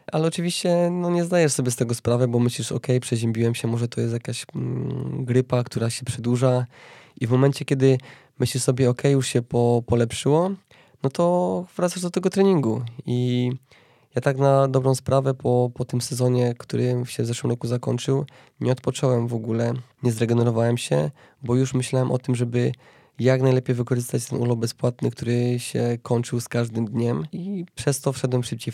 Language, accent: Polish, native